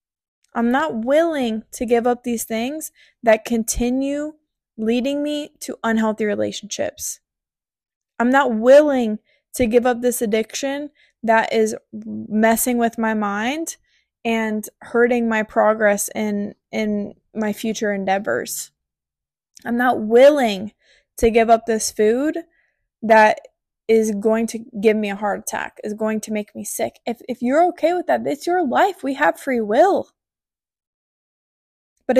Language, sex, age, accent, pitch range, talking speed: English, female, 20-39, American, 215-260 Hz, 140 wpm